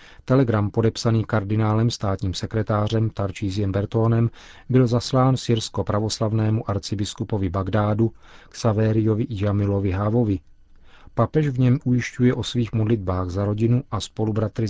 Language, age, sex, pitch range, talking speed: Czech, 40-59, male, 100-115 Hz, 110 wpm